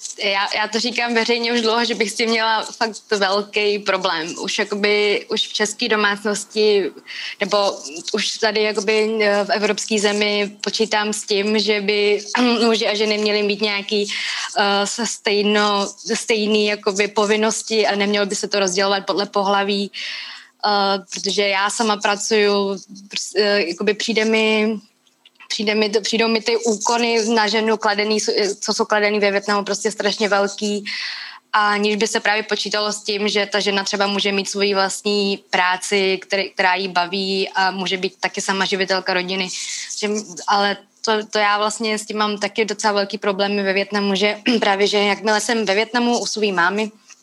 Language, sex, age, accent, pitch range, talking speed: Czech, female, 20-39, native, 200-220 Hz, 160 wpm